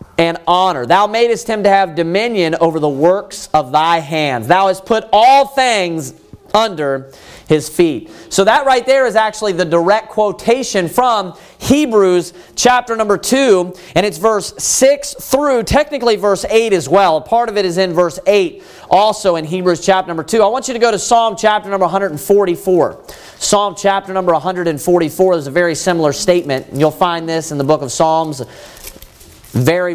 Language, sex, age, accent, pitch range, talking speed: English, male, 30-49, American, 165-210 Hz, 175 wpm